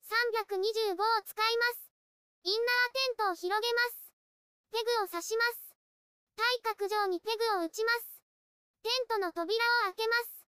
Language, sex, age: Japanese, male, 20-39